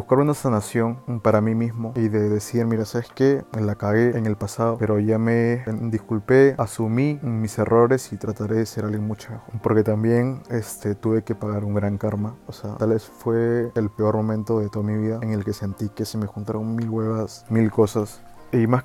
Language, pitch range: Spanish, 105-120 Hz